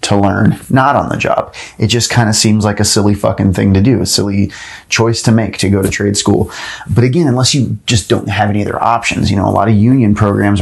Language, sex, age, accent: English, male, 30-49, American